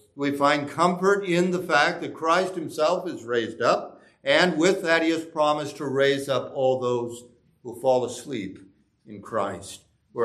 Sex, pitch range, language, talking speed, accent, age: male, 120-165 Hz, English, 170 wpm, American, 60-79